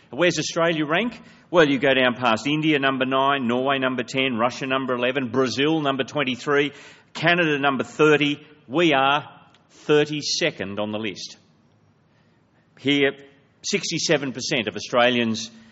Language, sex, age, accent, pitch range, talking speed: English, male, 40-59, Australian, 115-155 Hz, 125 wpm